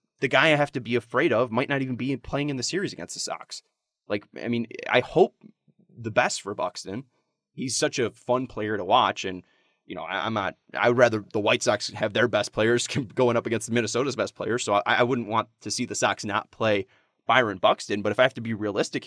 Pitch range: 120-150 Hz